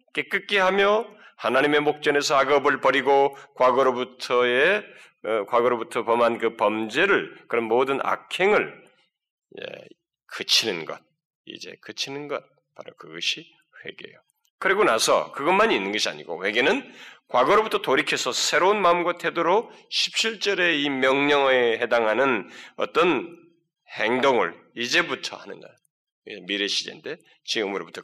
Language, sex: Korean, male